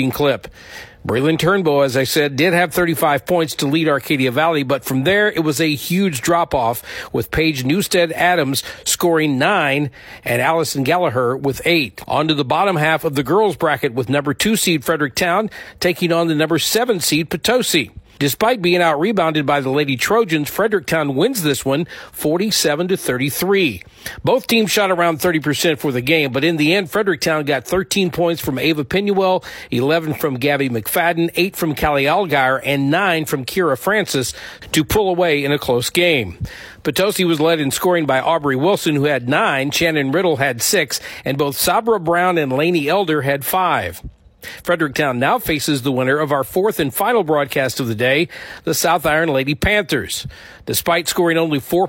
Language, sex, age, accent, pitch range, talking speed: English, male, 50-69, American, 145-180 Hz, 175 wpm